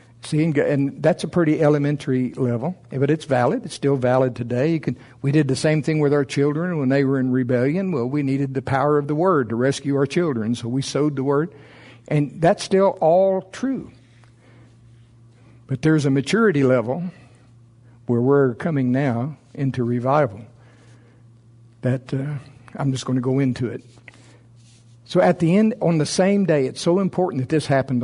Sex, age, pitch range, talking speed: male, 60-79, 120-150 Hz, 180 wpm